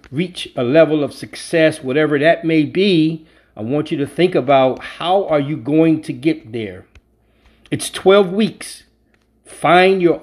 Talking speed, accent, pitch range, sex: 160 wpm, American, 130-170 Hz, male